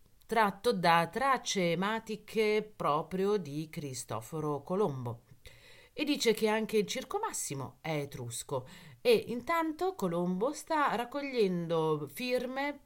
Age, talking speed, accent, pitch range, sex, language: 40-59, 105 wpm, native, 150-220 Hz, female, Italian